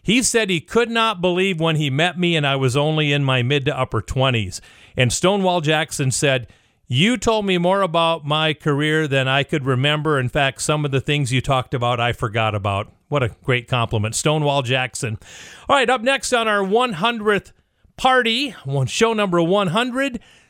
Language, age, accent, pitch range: English, 40-59, American, 130-185 Hz